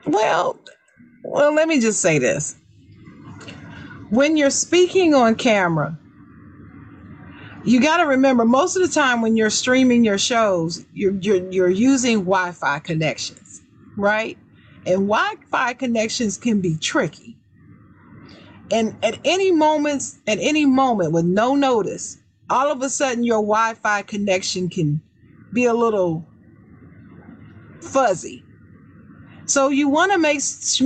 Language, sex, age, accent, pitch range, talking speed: English, female, 40-59, American, 185-265 Hz, 125 wpm